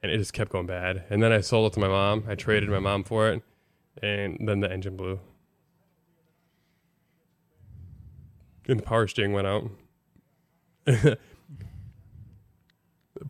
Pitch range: 100-125 Hz